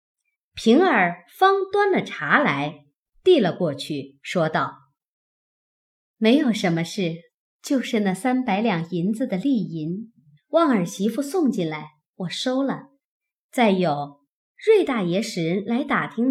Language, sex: Chinese, male